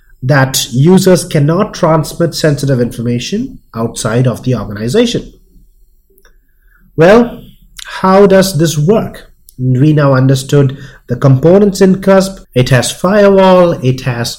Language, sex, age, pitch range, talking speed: English, male, 30-49, 130-180 Hz, 115 wpm